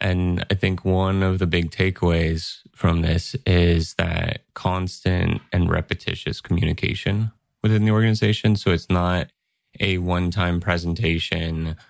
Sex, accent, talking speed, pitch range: male, American, 125 wpm, 85-105 Hz